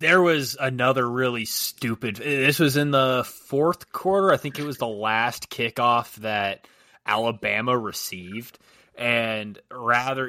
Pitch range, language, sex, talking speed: 120-150 Hz, English, male, 135 wpm